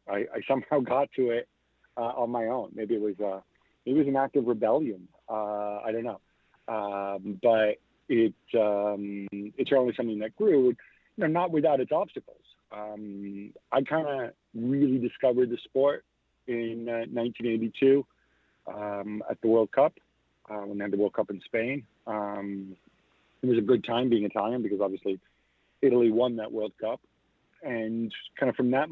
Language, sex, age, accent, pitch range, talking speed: English, male, 50-69, American, 100-125 Hz, 170 wpm